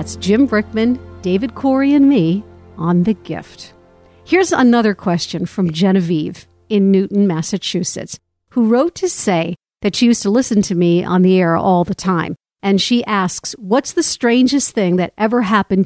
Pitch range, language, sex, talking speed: 180-230 Hz, English, female, 170 wpm